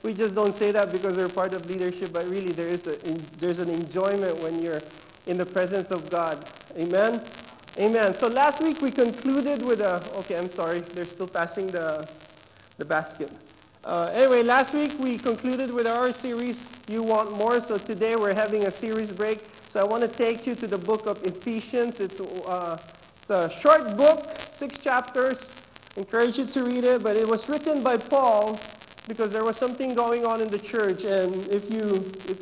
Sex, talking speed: male, 195 wpm